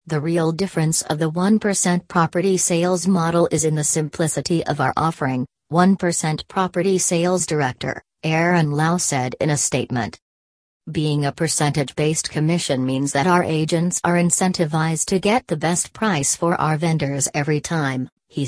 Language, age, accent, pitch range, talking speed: English, 40-59, American, 150-180 Hz, 155 wpm